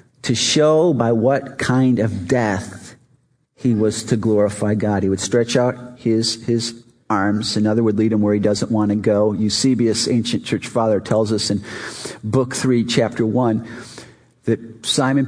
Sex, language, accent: male, English, American